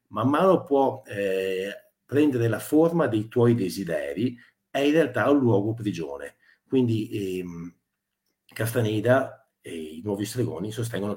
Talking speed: 130 wpm